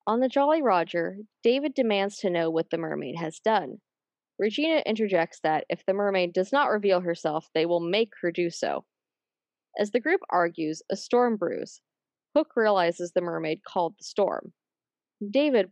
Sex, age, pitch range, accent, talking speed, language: female, 20-39, 175-270 Hz, American, 170 wpm, English